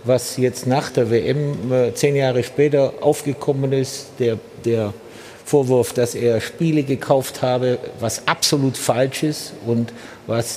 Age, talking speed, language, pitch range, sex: 50-69, 135 wpm, German, 120-145 Hz, male